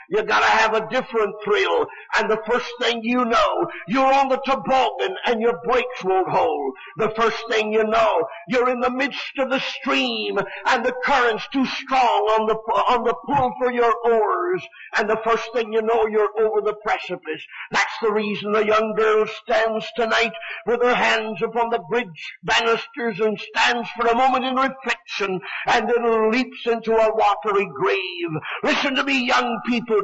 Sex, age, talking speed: male, 50-69, 180 wpm